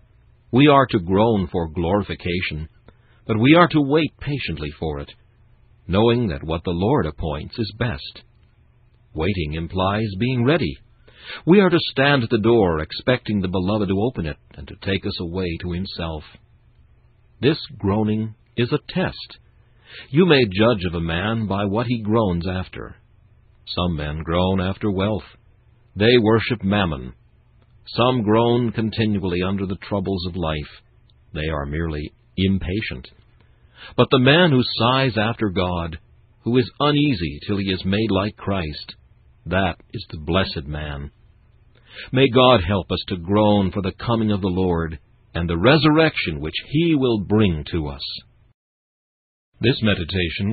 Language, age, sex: English, 60-79, male